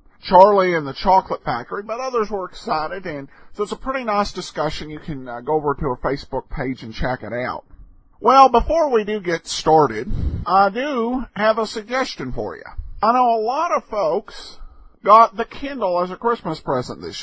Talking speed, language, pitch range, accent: 195 wpm, English, 165-240 Hz, American